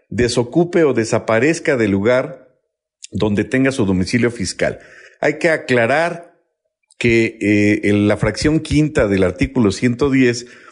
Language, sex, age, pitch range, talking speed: Spanish, male, 50-69, 105-135 Hz, 125 wpm